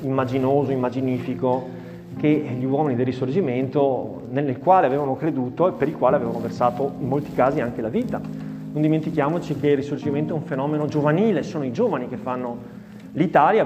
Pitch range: 130-160 Hz